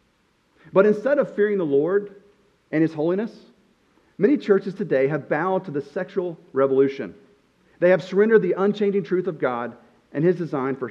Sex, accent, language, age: male, American, English, 40-59